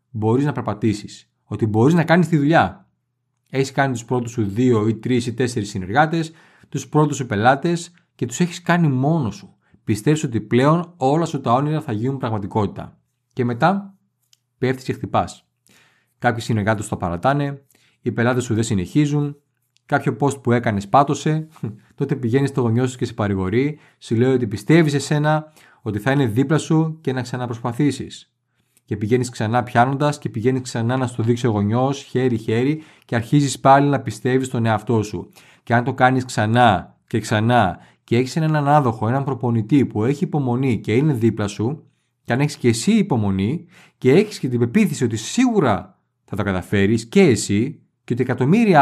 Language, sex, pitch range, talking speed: Greek, male, 115-145 Hz, 180 wpm